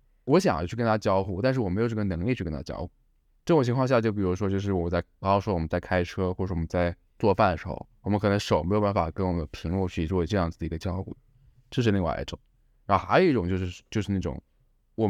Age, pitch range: 20-39, 90-115 Hz